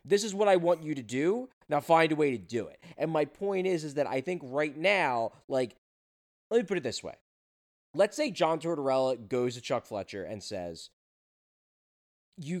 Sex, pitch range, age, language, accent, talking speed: male, 130-170 Hz, 20-39, English, American, 205 wpm